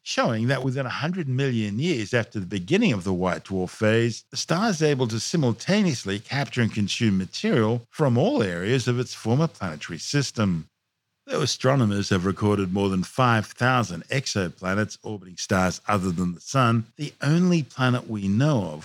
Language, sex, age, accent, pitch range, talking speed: English, male, 50-69, Australian, 100-125 Hz, 165 wpm